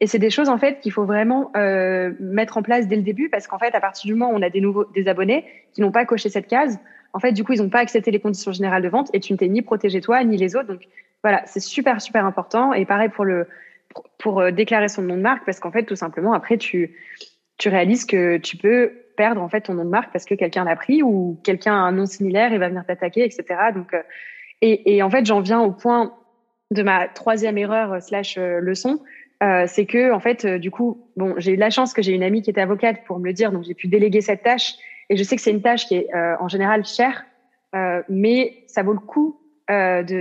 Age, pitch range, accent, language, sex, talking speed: 20-39, 190-235 Hz, French, French, female, 265 wpm